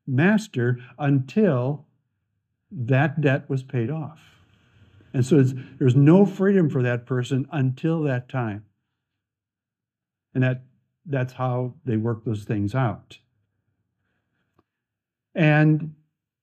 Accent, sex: American, male